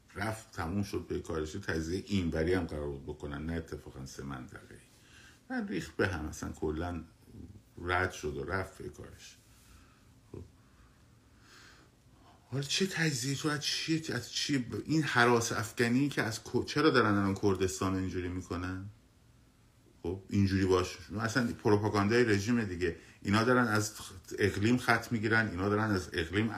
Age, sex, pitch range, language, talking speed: 50-69, male, 90-115 Hz, Persian, 140 wpm